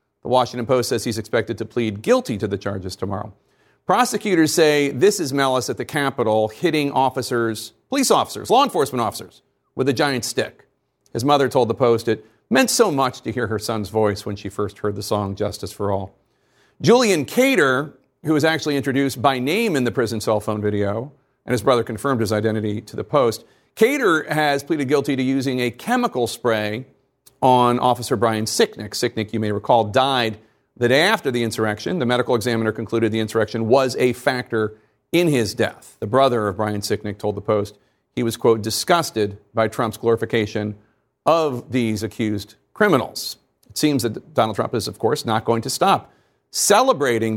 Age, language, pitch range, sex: 40-59, English, 110-135 Hz, male